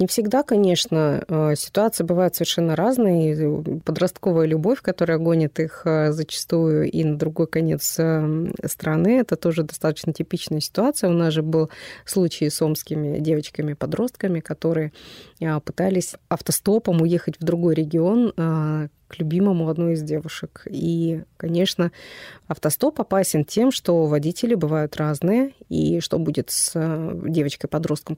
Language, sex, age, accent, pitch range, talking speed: Russian, female, 20-39, native, 160-190 Hz, 120 wpm